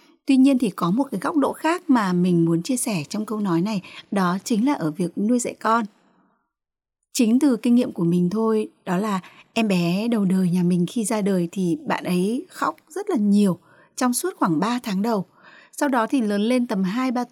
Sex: female